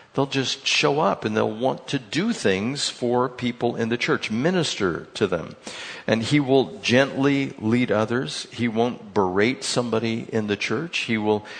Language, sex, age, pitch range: English, male, 60-79, 110-140 Hz